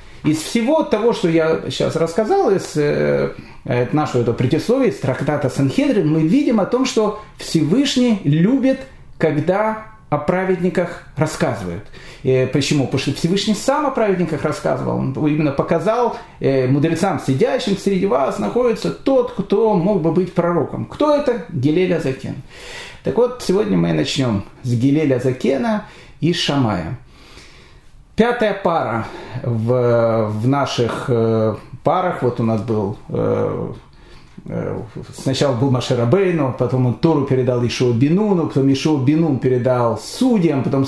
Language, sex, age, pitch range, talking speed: Russian, male, 30-49, 135-200 Hz, 135 wpm